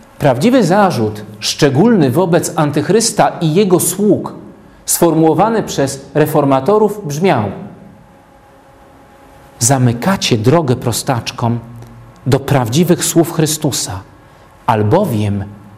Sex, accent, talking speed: male, native, 75 wpm